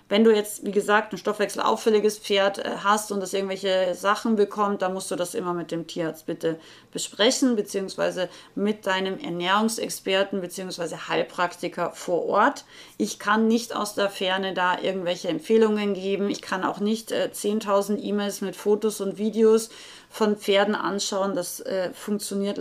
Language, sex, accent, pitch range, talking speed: German, female, German, 195-220 Hz, 155 wpm